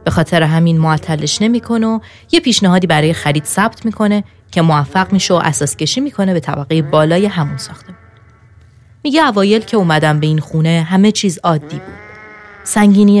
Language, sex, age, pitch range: Persian, female, 30-49, 150-180 Hz